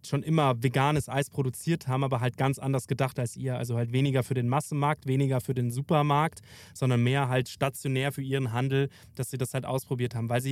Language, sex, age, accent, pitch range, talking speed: German, male, 20-39, German, 125-150 Hz, 215 wpm